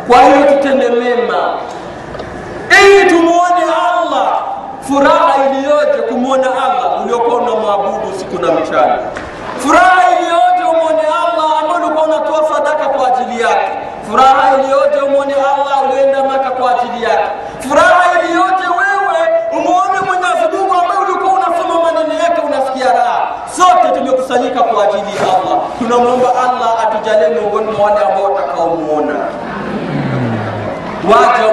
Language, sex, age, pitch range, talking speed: Swahili, male, 40-59, 220-335 Hz, 120 wpm